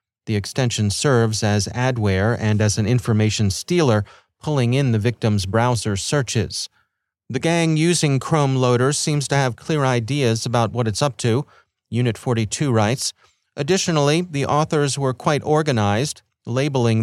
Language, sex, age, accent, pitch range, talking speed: English, male, 30-49, American, 115-145 Hz, 145 wpm